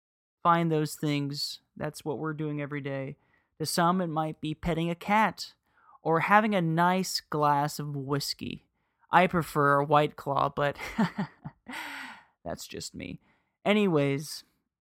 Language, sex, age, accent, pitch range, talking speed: English, male, 30-49, American, 145-170 Hz, 135 wpm